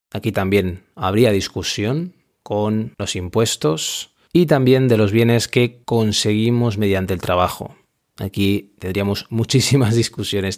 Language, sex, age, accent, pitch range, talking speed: Spanish, male, 20-39, Spanish, 100-115 Hz, 120 wpm